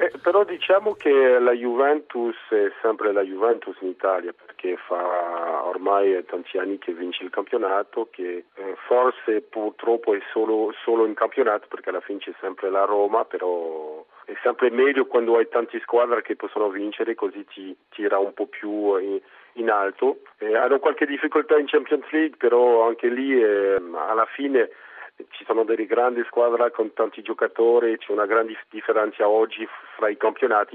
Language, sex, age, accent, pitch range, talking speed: Italian, male, 40-59, native, 100-155 Hz, 165 wpm